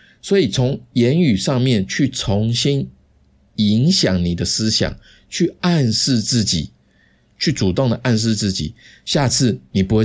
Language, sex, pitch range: Chinese, male, 95-125 Hz